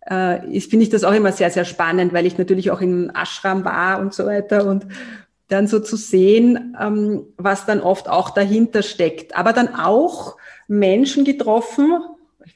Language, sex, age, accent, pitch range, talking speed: German, female, 30-49, German, 195-245 Hz, 170 wpm